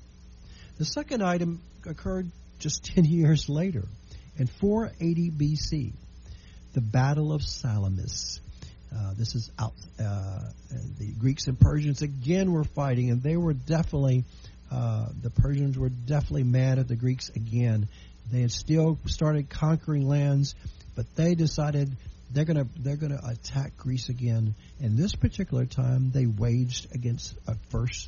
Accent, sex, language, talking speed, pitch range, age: American, male, English, 145 wpm, 115-155 Hz, 50-69